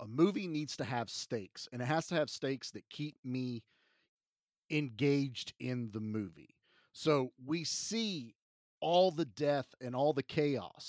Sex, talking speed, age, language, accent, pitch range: male, 160 wpm, 40-59, English, American, 120-150 Hz